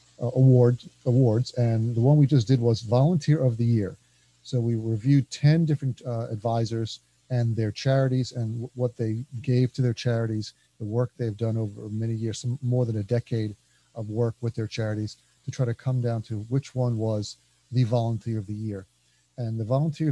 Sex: male